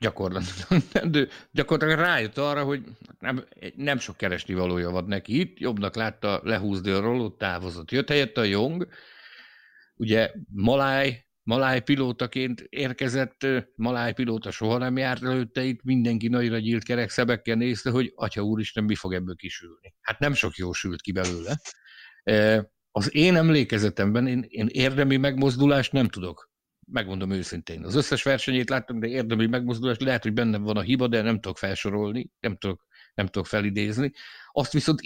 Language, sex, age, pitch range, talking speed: Hungarian, male, 60-79, 100-130 Hz, 150 wpm